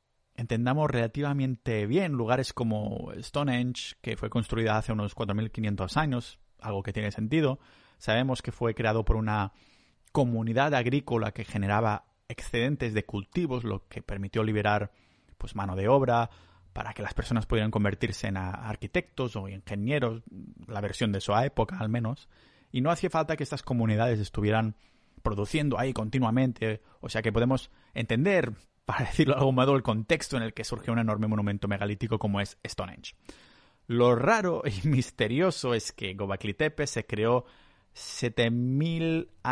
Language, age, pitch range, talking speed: Spanish, 30-49, 105-130 Hz, 150 wpm